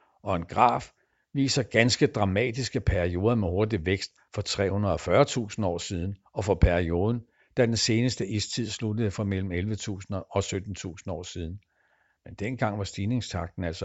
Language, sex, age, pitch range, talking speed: Danish, male, 60-79, 90-125 Hz, 145 wpm